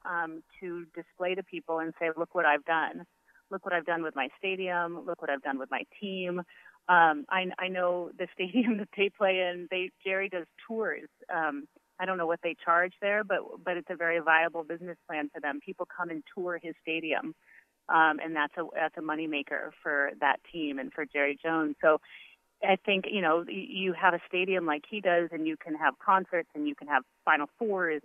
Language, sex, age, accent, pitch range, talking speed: English, female, 30-49, American, 160-190 Hz, 215 wpm